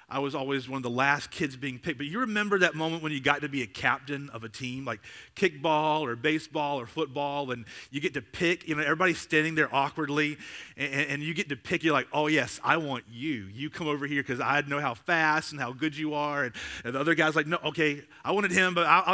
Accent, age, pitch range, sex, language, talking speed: American, 30-49, 125-160 Hz, male, English, 255 wpm